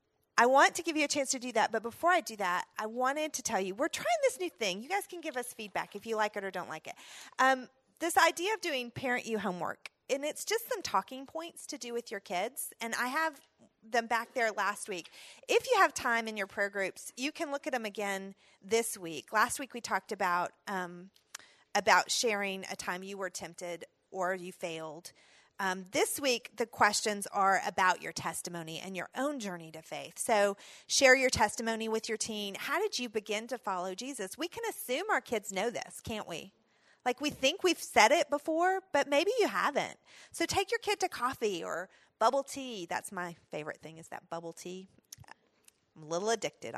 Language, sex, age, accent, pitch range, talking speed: English, female, 30-49, American, 195-300 Hz, 215 wpm